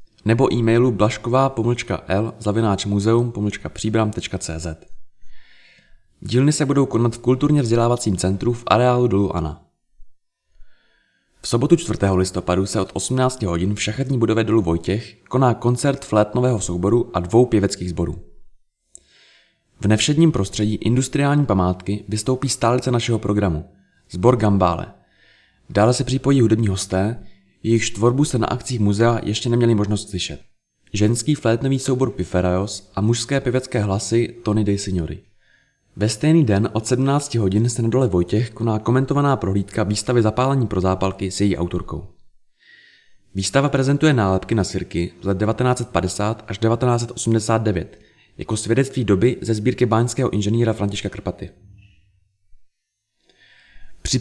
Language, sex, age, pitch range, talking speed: Czech, male, 20-39, 95-125 Hz, 125 wpm